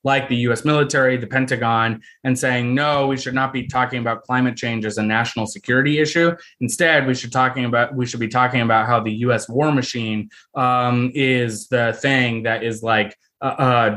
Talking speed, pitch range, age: 200 wpm, 115-130 Hz, 20-39